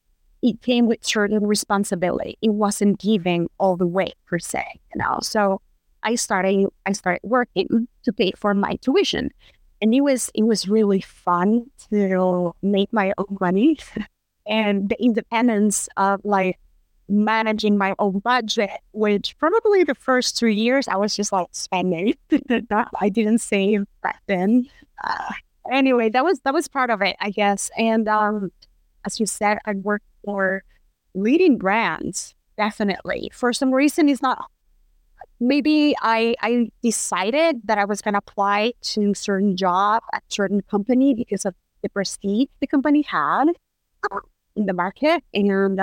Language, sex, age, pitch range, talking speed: English, female, 20-39, 200-245 Hz, 155 wpm